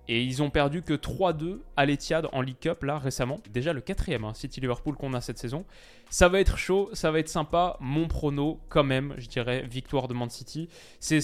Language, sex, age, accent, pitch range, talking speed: French, male, 20-39, French, 125-155 Hz, 220 wpm